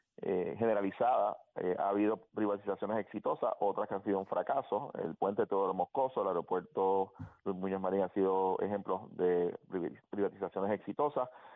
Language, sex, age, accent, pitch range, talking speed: Spanish, male, 30-49, Venezuelan, 100-120 Hz, 155 wpm